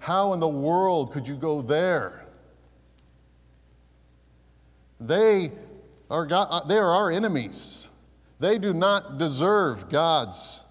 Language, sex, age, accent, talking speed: English, male, 50-69, American, 110 wpm